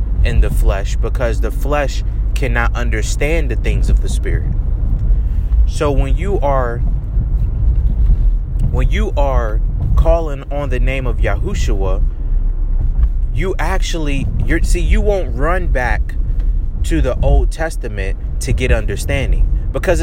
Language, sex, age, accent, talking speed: English, male, 30-49, American, 125 wpm